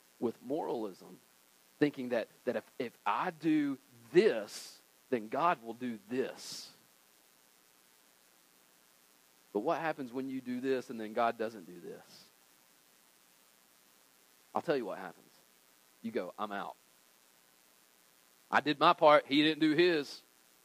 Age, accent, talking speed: 40-59, American, 130 wpm